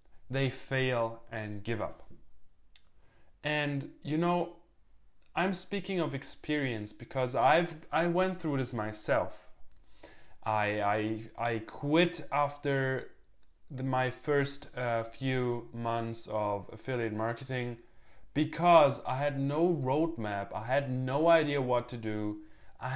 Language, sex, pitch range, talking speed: English, male, 115-150 Hz, 120 wpm